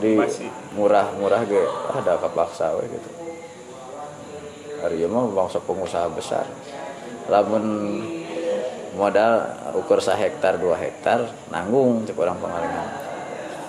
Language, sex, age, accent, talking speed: Indonesian, male, 20-39, native, 100 wpm